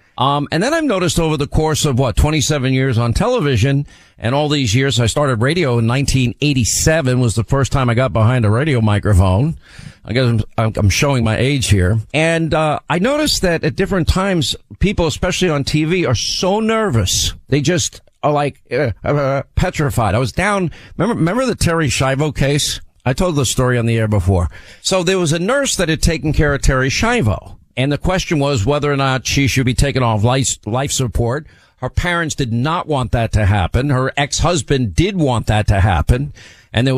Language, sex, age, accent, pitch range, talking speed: English, male, 50-69, American, 115-155 Hz, 200 wpm